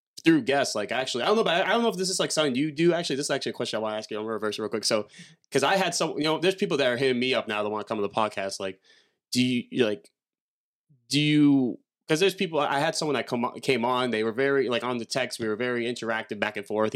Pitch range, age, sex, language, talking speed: 110-135 Hz, 20-39, male, English, 305 wpm